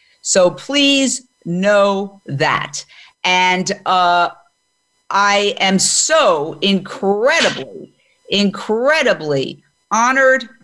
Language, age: English, 50-69